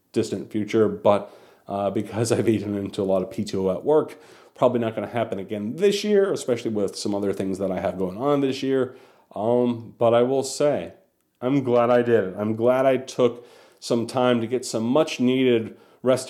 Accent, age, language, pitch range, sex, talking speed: American, 40-59, English, 110-130 Hz, male, 205 wpm